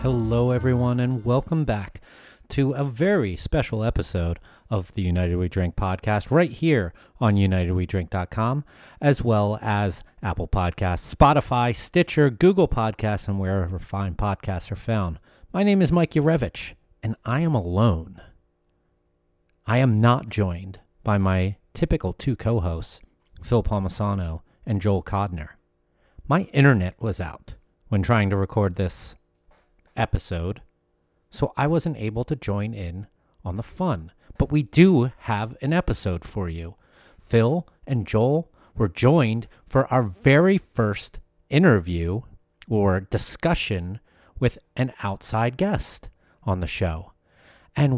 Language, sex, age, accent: English, male, 40-59, American